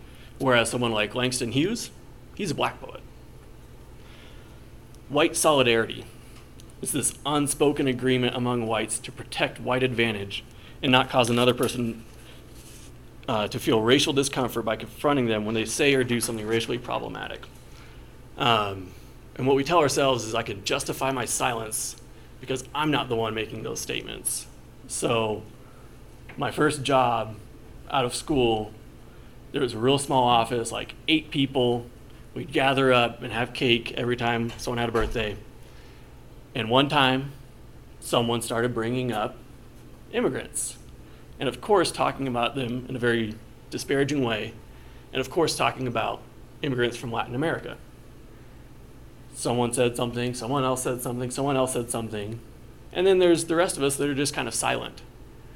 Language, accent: English, American